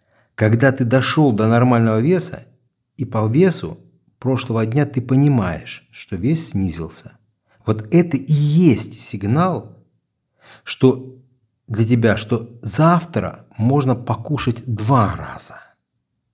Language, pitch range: Russian, 105-130 Hz